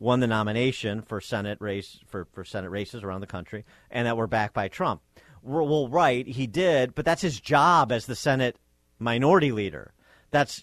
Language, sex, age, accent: English, male, 40-59, American